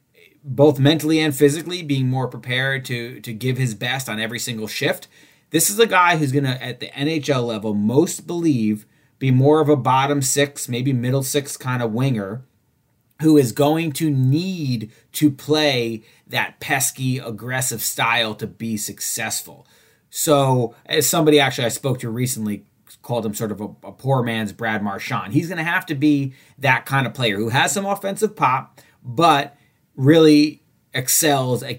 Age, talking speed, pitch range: 30-49, 175 wpm, 115-145 Hz